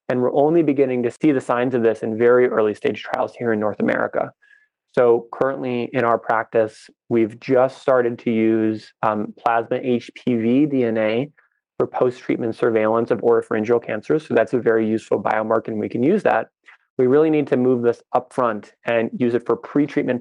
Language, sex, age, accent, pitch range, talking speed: English, male, 30-49, American, 115-130 Hz, 185 wpm